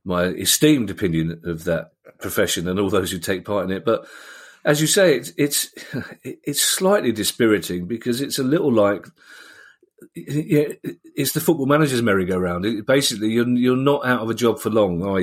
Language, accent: English, British